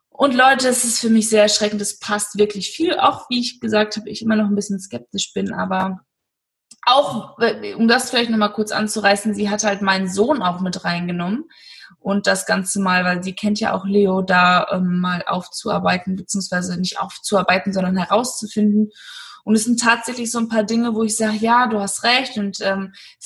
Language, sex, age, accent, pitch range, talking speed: German, female, 20-39, German, 200-230 Hz, 195 wpm